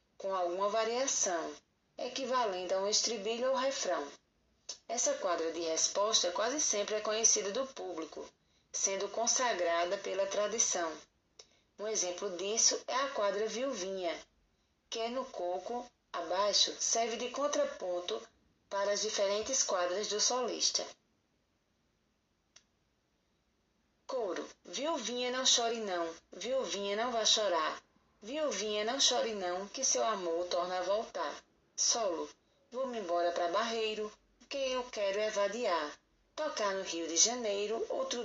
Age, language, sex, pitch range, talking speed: 20-39, Portuguese, female, 195-245 Hz, 120 wpm